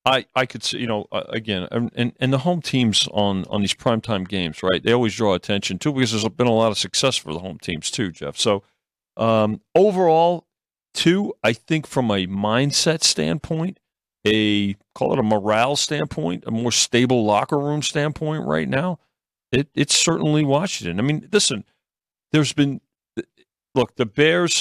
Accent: American